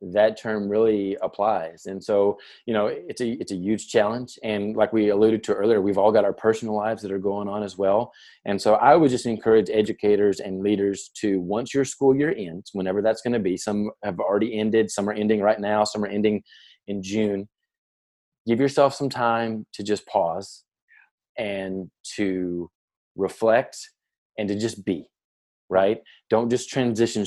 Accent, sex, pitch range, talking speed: American, male, 100-115 Hz, 185 wpm